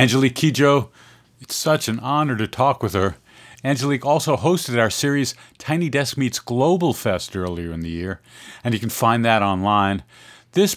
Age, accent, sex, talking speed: 50-69, American, male, 175 wpm